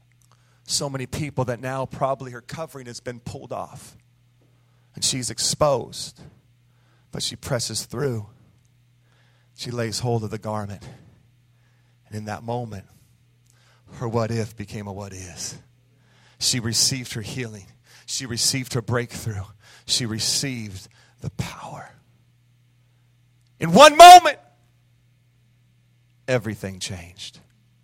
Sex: male